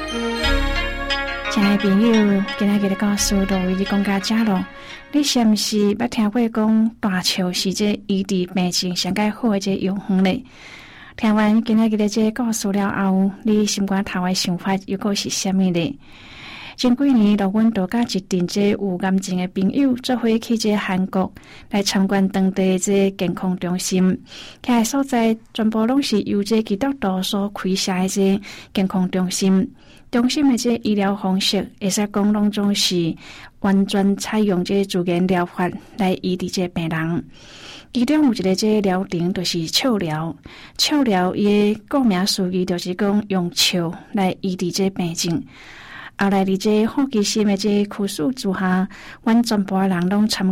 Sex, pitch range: female, 190-220 Hz